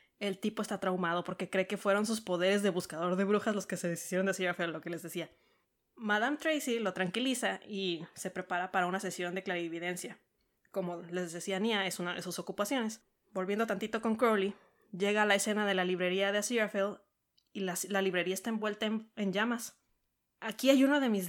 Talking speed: 205 wpm